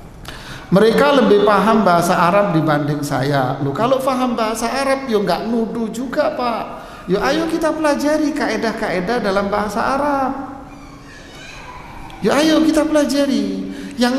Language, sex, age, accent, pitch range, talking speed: Indonesian, male, 50-69, native, 175-285 Hz, 125 wpm